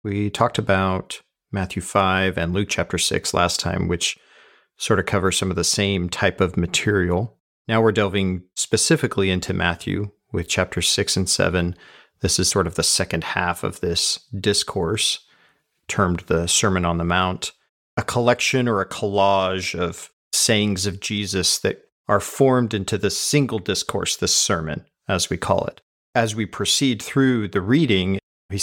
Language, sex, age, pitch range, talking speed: English, male, 40-59, 95-115 Hz, 165 wpm